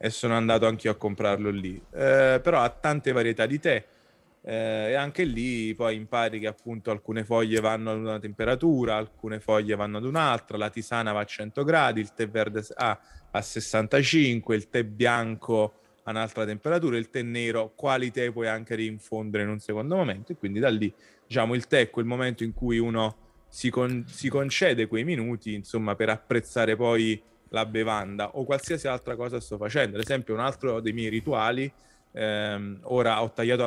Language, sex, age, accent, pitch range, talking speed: Italian, male, 20-39, native, 110-125 Hz, 185 wpm